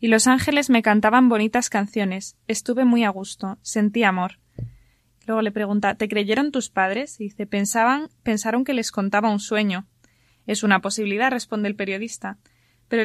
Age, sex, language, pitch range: 20-39, female, Spanish, 205-245 Hz